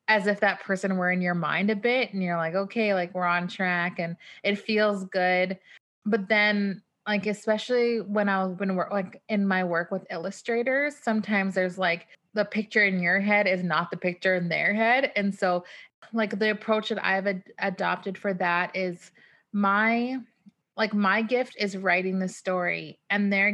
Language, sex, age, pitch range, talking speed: English, female, 30-49, 180-215 Hz, 190 wpm